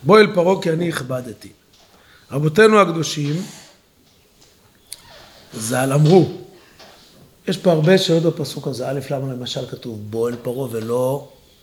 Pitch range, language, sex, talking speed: 115-170 Hz, Hebrew, male, 130 wpm